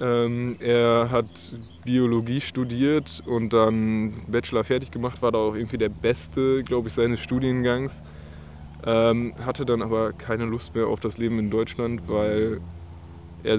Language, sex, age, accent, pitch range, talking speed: German, male, 20-39, German, 100-120 Hz, 150 wpm